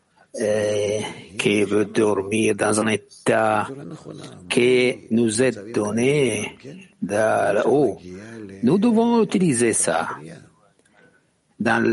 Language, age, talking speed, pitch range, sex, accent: English, 60-79, 100 wpm, 110-130 Hz, male, Italian